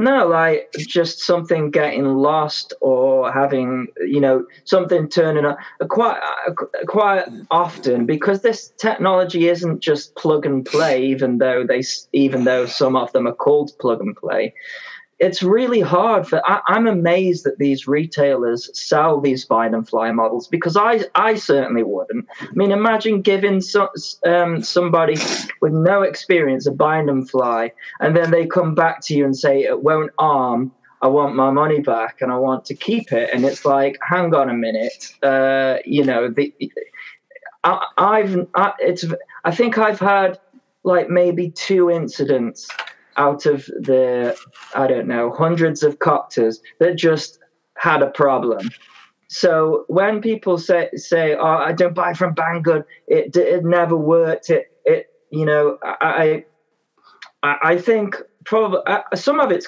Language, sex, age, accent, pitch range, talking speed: English, male, 20-39, British, 140-185 Hz, 160 wpm